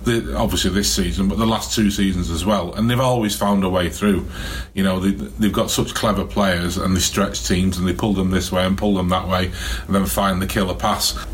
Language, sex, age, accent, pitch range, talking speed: English, male, 30-49, British, 95-110 Hz, 240 wpm